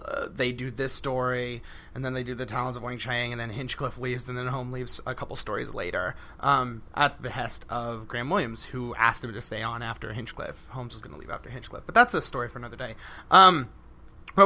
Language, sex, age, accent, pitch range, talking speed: English, male, 30-49, American, 125-155 Hz, 235 wpm